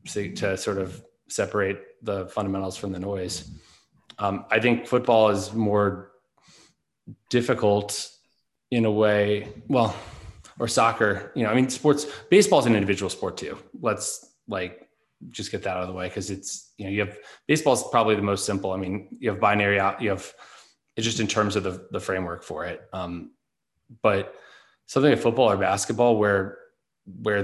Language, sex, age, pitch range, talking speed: English, male, 20-39, 95-110 Hz, 175 wpm